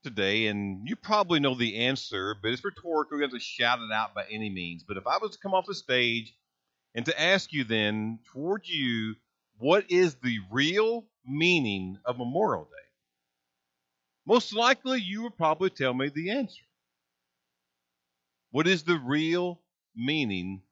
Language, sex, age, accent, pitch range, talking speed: English, male, 50-69, American, 105-175 Hz, 165 wpm